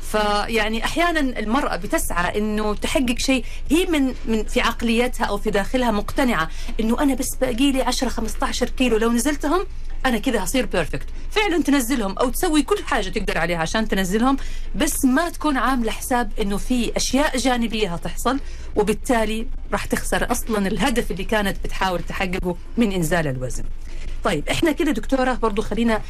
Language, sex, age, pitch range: Arabic, female, 40-59, 180-245 Hz